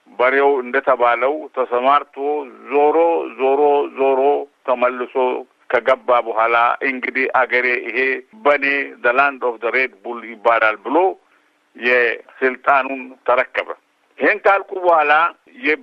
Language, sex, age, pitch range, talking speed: Amharic, male, 60-79, 130-195 Hz, 120 wpm